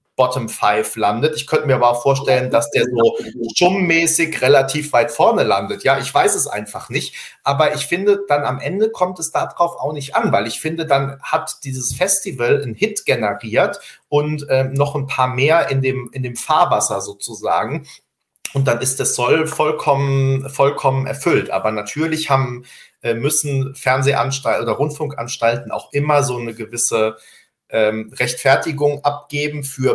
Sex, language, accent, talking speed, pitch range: male, German, German, 160 wpm, 120-150 Hz